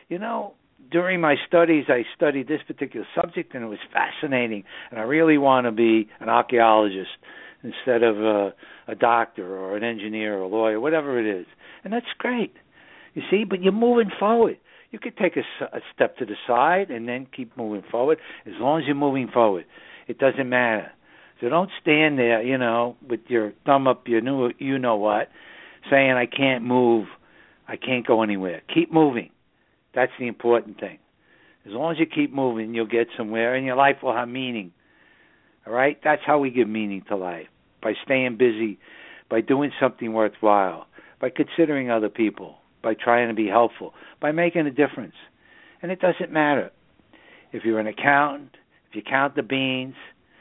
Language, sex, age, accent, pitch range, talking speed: English, male, 60-79, American, 115-145 Hz, 180 wpm